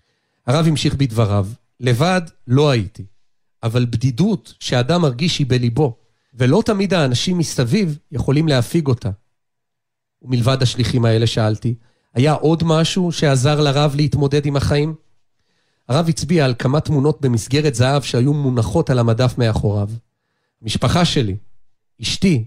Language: Hebrew